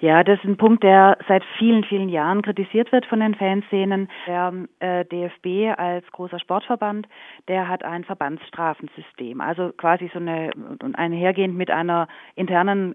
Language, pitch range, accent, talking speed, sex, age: German, 170-205 Hz, German, 155 wpm, female, 30-49